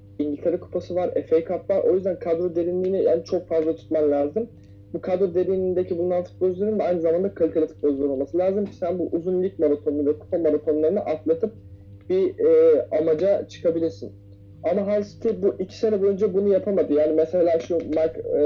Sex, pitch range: male, 150-180 Hz